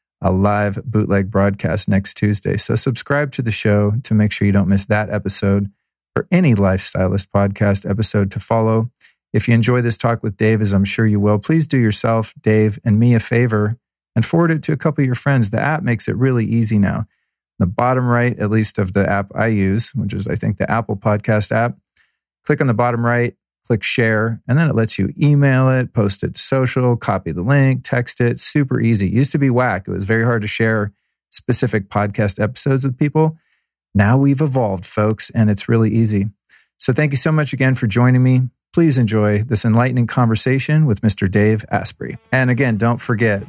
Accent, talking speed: American, 205 wpm